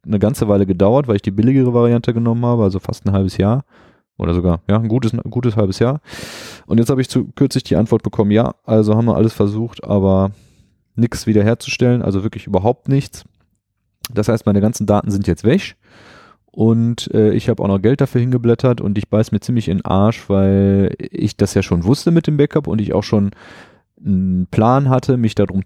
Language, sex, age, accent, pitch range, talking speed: German, male, 20-39, German, 100-120 Hz, 210 wpm